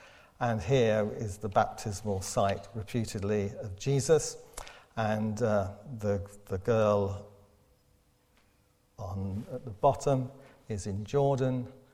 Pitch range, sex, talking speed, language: 105-140 Hz, male, 105 wpm, English